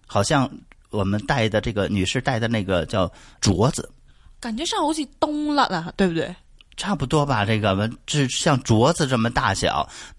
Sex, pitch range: male, 95-140 Hz